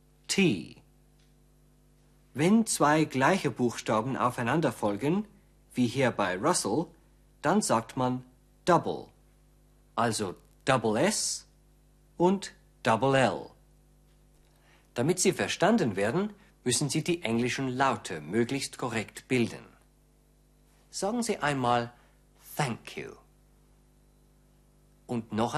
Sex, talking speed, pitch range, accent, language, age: male, 90 wpm, 115-160 Hz, German, German, 50-69